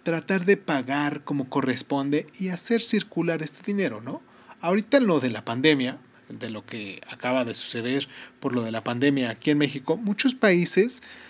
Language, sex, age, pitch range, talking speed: Spanish, male, 30-49, 130-170 Hz, 170 wpm